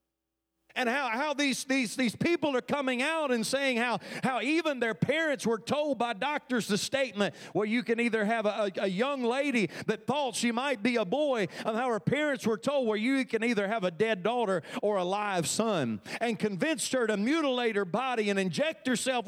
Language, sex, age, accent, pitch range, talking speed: English, male, 40-59, American, 210-260 Hz, 210 wpm